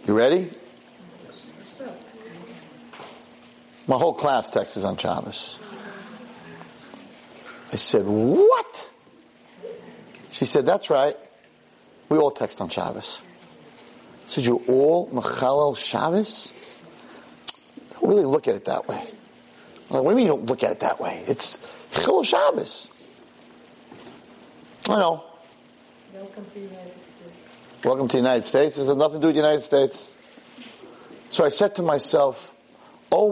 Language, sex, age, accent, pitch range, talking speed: English, male, 50-69, American, 125-185 Hz, 130 wpm